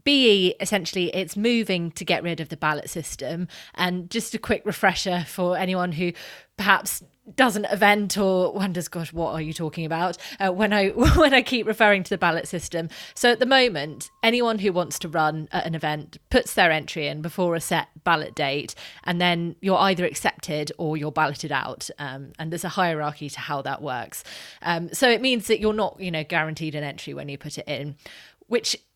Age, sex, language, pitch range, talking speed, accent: 20-39, female, English, 160-195 Hz, 205 wpm, British